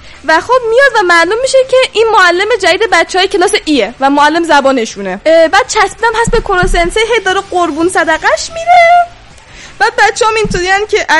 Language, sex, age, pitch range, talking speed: Persian, female, 10-29, 290-415 Hz, 165 wpm